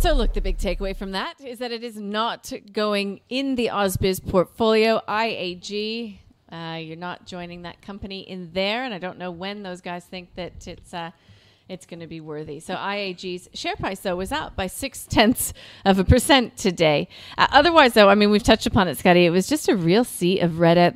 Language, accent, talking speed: English, American, 210 wpm